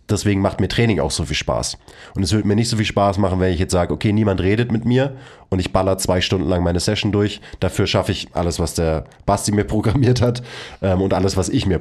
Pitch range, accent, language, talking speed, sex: 90-110 Hz, German, German, 260 wpm, male